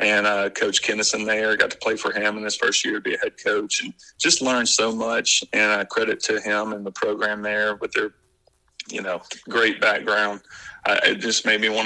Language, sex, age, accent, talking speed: English, male, 40-59, American, 225 wpm